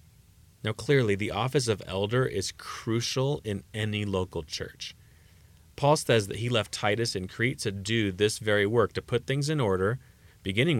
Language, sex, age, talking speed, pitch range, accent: English, male, 30-49, 170 wpm, 95-120 Hz, American